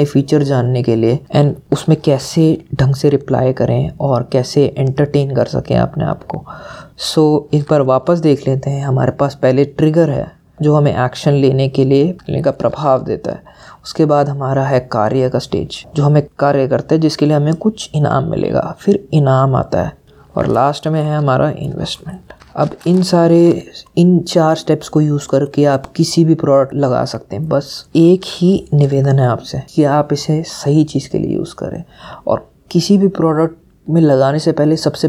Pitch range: 135-160 Hz